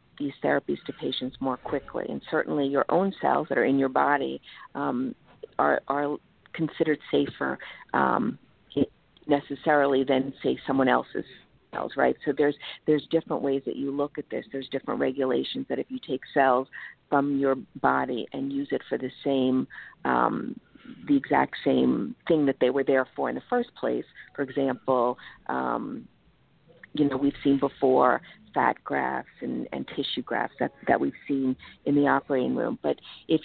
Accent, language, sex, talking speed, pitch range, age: American, English, female, 170 wpm, 135-160 Hz, 50-69